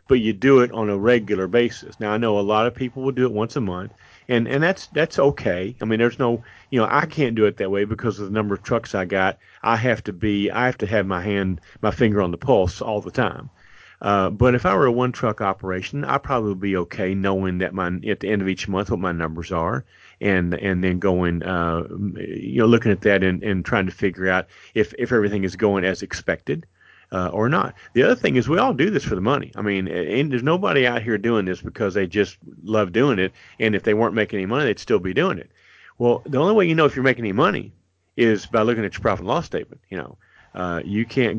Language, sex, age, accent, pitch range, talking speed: English, male, 40-59, American, 95-115 Hz, 260 wpm